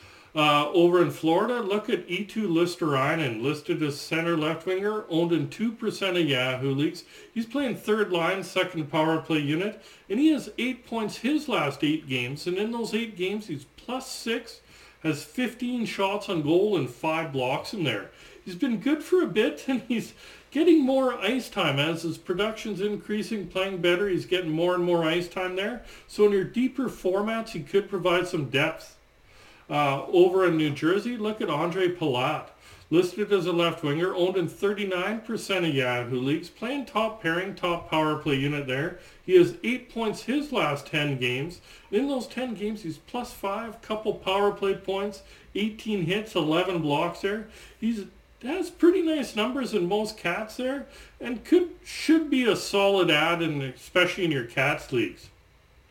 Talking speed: 175 wpm